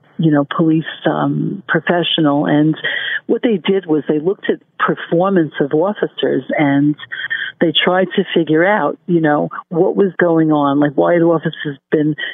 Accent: American